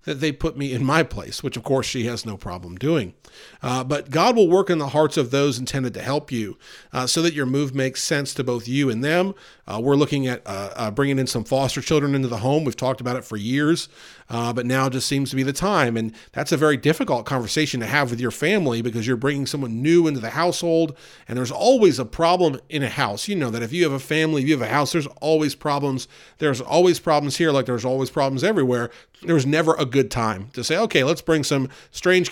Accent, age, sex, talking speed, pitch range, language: American, 40-59, male, 250 wpm, 125-155 Hz, English